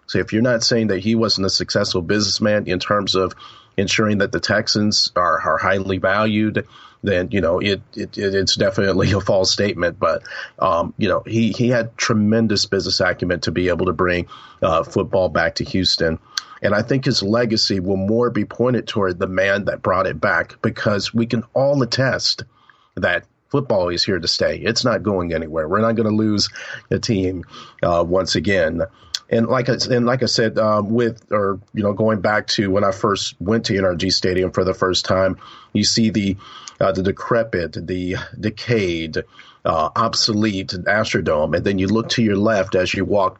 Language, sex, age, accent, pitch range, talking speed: English, male, 40-59, American, 95-115 Hz, 195 wpm